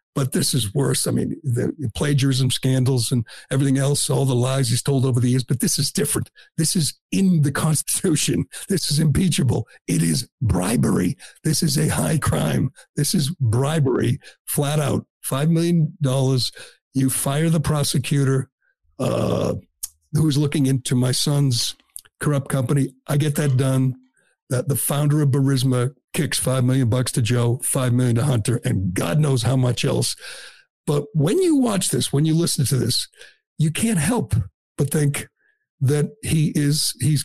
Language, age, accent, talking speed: English, 60-79, American, 170 wpm